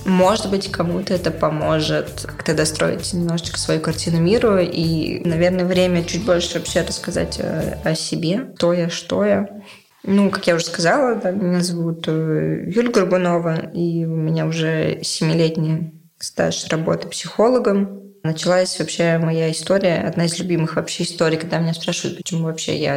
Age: 20-39